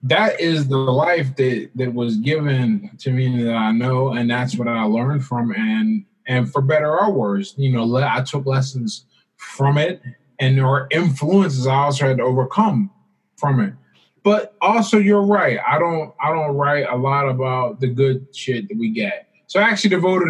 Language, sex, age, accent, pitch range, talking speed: English, male, 20-39, American, 125-155 Hz, 190 wpm